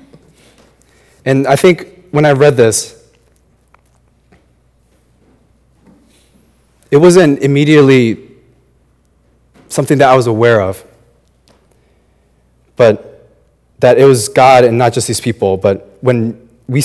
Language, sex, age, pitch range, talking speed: English, male, 30-49, 100-135 Hz, 105 wpm